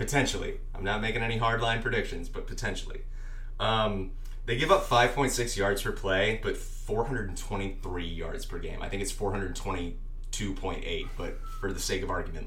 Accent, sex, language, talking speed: American, male, English, 155 wpm